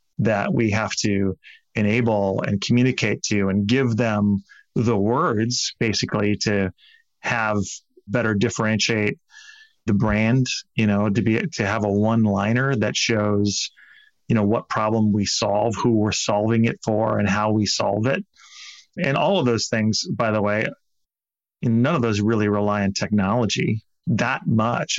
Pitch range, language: 105-120 Hz, English